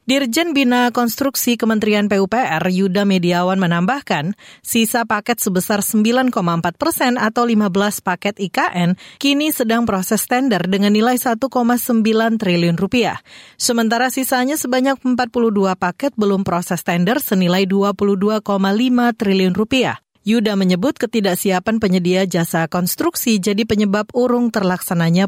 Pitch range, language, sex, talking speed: 190-245 Hz, Indonesian, female, 115 wpm